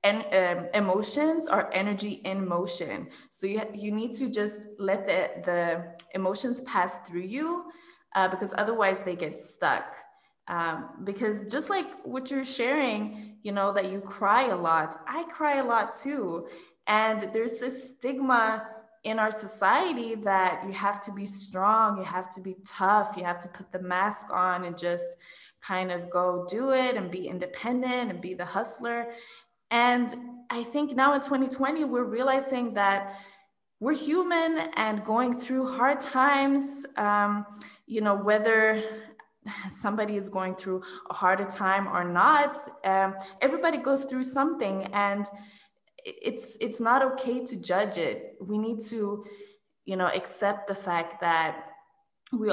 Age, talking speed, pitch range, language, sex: 20-39, 155 wpm, 190-250 Hz, English, female